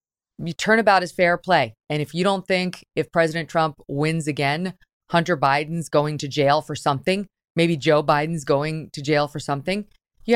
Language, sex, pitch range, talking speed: English, female, 145-200 Hz, 185 wpm